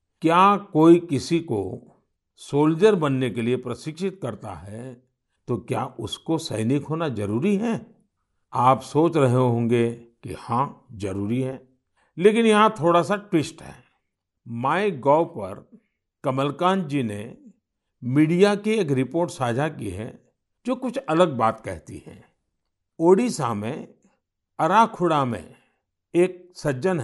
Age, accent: 50-69, native